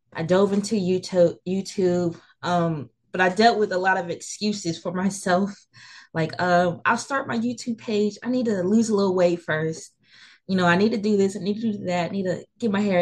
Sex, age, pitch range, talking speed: female, 20-39, 160-190 Hz, 220 wpm